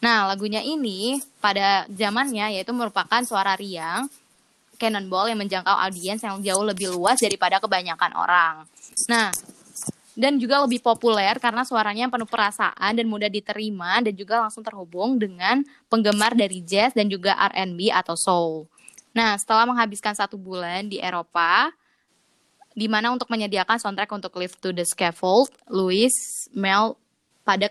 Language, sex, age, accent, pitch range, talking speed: Indonesian, female, 20-39, native, 185-230 Hz, 140 wpm